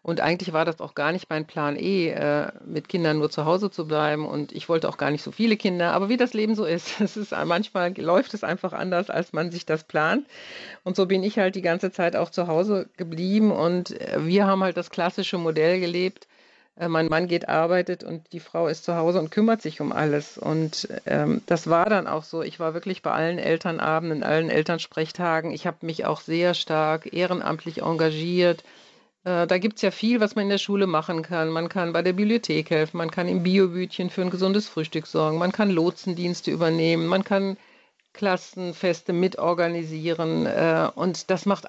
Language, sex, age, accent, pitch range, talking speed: German, female, 50-69, German, 160-190 Hz, 205 wpm